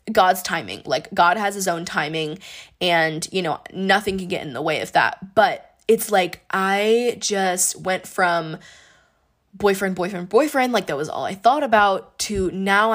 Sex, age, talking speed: female, 10-29, 175 wpm